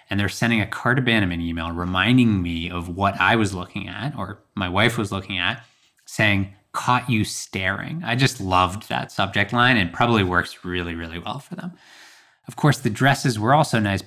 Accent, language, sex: American, English, male